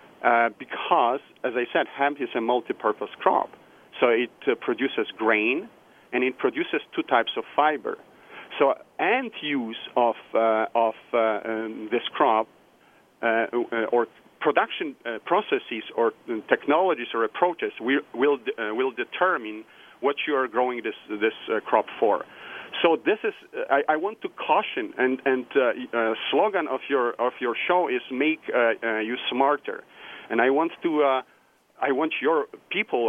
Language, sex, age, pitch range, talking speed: English, male, 40-59, 115-175 Hz, 160 wpm